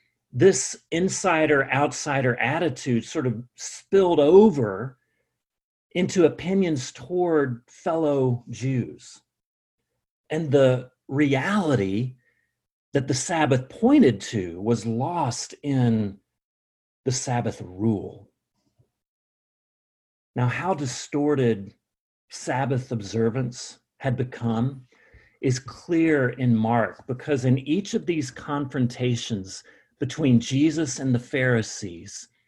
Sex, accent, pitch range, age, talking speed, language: male, American, 120-160 Hz, 40-59, 90 wpm, English